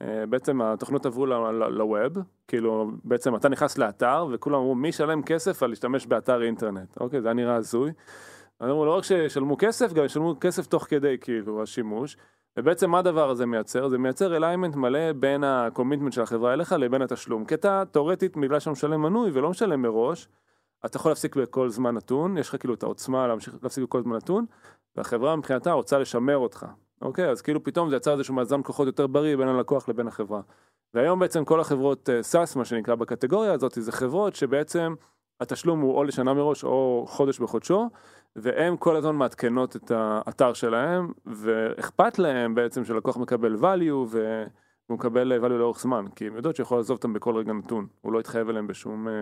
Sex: male